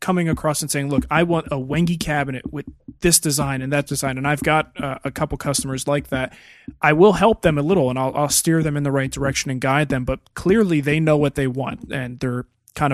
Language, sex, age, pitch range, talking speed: English, male, 20-39, 135-155 Hz, 245 wpm